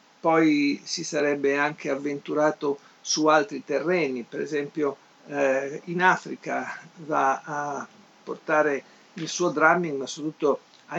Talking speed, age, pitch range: 120 wpm, 50-69, 135-165 Hz